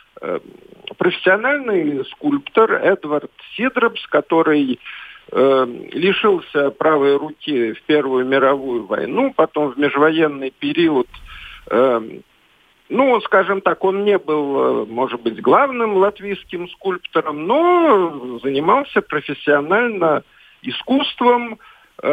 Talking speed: 90 wpm